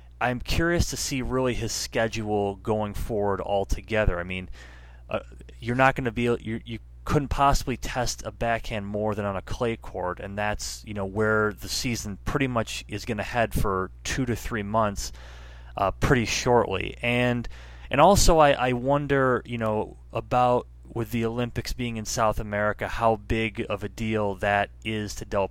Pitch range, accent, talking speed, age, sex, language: 95-115 Hz, American, 180 wpm, 30-49, male, English